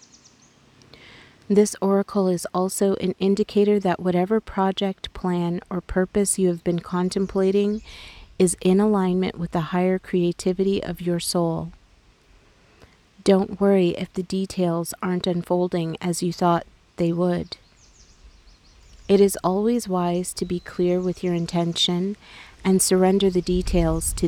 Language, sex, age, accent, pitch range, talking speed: English, female, 30-49, American, 170-190 Hz, 130 wpm